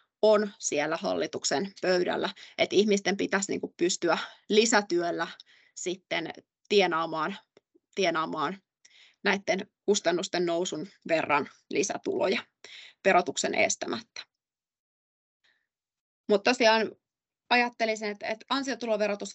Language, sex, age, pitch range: Finnish, female, 20-39, 185-215 Hz